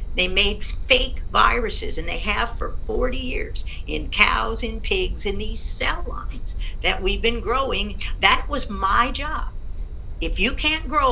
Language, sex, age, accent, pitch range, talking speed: English, female, 50-69, American, 175-235 Hz, 160 wpm